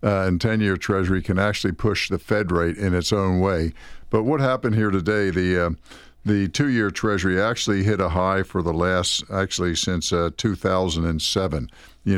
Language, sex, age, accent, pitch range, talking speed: English, male, 60-79, American, 95-110 Hz, 175 wpm